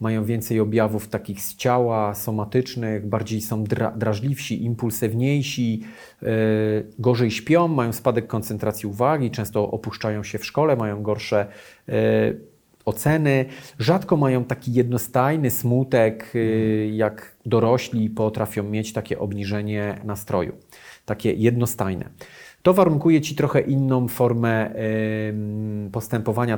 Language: Polish